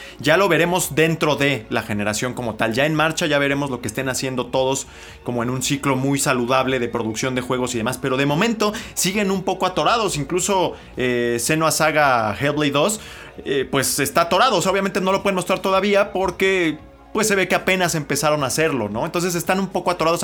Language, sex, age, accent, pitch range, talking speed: Spanish, male, 30-49, Mexican, 130-170 Hz, 210 wpm